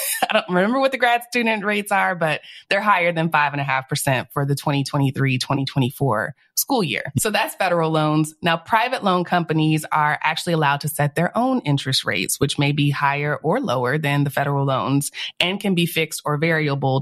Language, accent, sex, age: English, American, female, 20-39